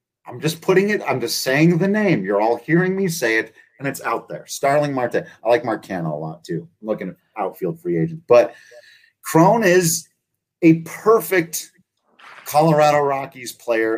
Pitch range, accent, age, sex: 110-165 Hz, American, 30-49, male